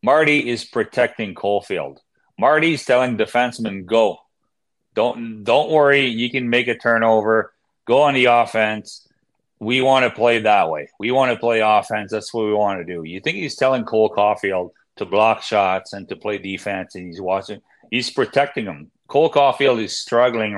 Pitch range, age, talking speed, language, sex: 105-130 Hz, 30-49, 175 wpm, English, male